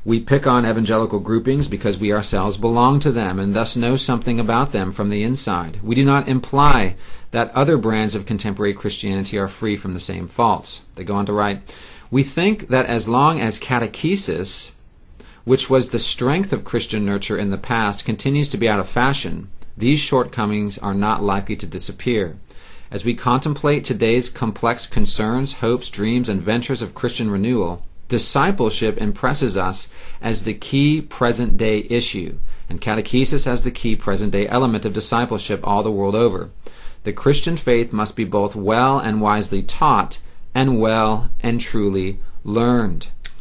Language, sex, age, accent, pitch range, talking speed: English, male, 40-59, American, 100-125 Hz, 165 wpm